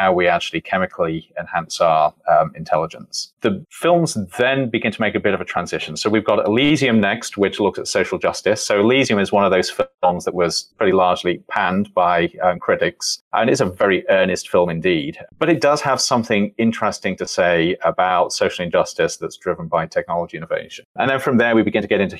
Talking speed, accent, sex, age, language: 205 wpm, British, male, 30-49, English